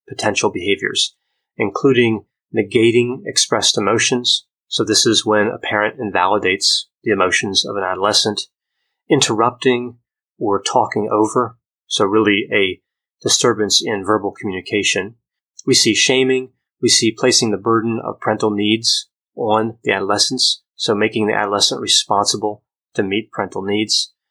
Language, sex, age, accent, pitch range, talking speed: English, male, 30-49, American, 105-130 Hz, 130 wpm